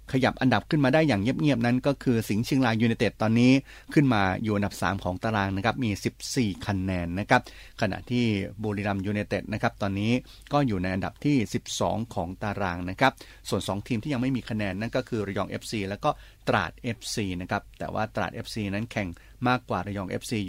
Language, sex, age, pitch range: Thai, male, 30-49, 100-125 Hz